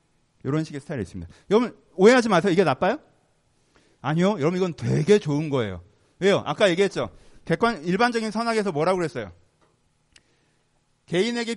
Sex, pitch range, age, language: male, 140-215 Hz, 40-59, Korean